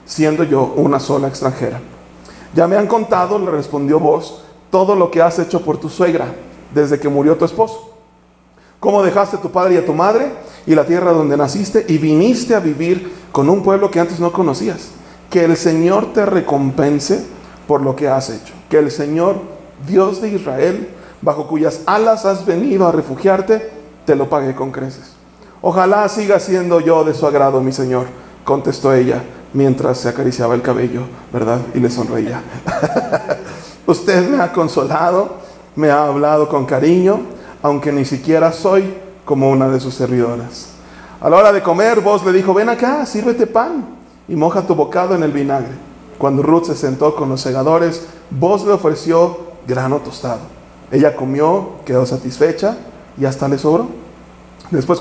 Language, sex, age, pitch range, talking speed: English, male, 40-59, 140-185 Hz, 170 wpm